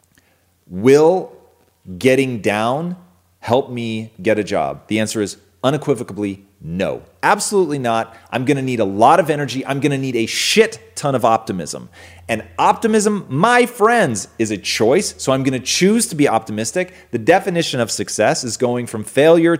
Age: 30-49